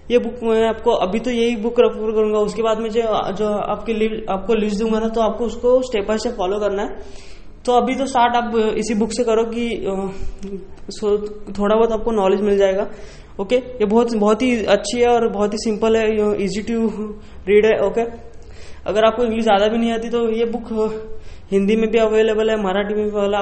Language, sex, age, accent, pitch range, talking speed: Hindi, female, 20-39, native, 205-230 Hz, 210 wpm